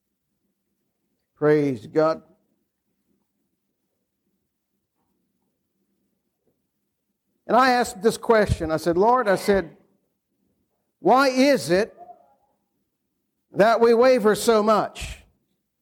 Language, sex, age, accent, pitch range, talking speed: English, male, 60-79, American, 200-255 Hz, 75 wpm